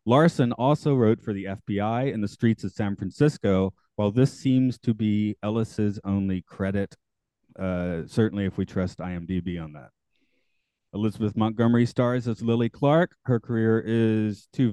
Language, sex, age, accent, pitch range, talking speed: English, male, 30-49, American, 100-125 Hz, 155 wpm